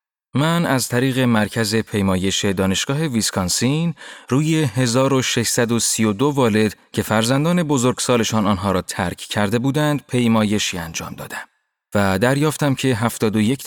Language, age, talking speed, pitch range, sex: Persian, 30-49, 110 wpm, 105-140 Hz, male